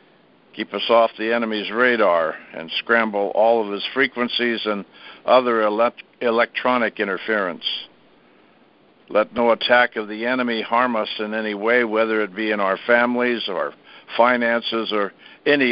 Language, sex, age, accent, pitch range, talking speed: English, male, 60-79, American, 105-120 Hz, 140 wpm